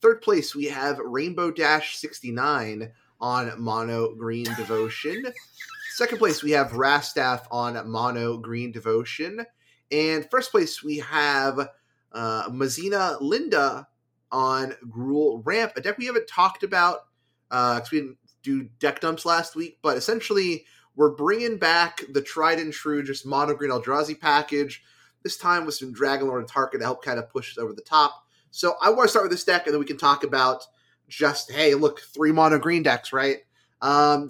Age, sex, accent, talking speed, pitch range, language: 20-39, male, American, 175 wpm, 130-165 Hz, English